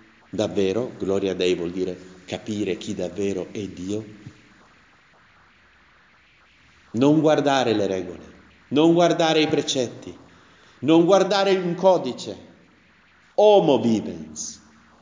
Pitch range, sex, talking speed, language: 105-145 Hz, male, 95 wpm, Italian